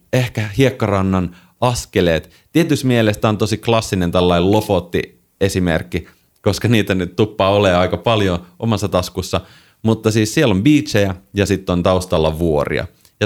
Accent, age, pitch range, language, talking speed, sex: native, 30-49, 90-115 Hz, Finnish, 135 wpm, male